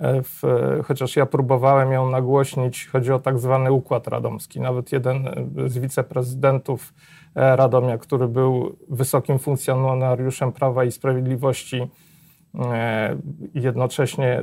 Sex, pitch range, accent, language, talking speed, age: male, 125-145 Hz, native, Polish, 100 wpm, 40-59